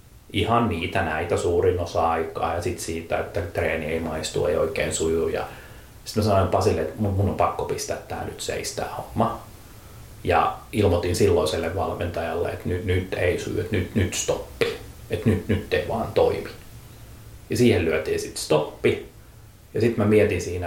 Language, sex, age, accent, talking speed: Finnish, male, 30-49, native, 165 wpm